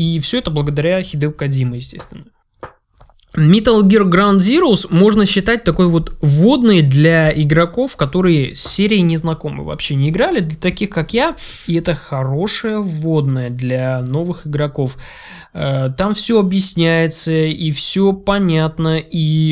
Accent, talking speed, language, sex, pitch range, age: native, 130 wpm, Russian, male, 145-195 Hz, 20-39